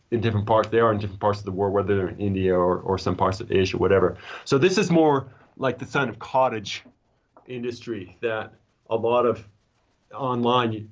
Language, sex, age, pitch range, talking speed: English, male, 30-49, 105-130 Hz, 205 wpm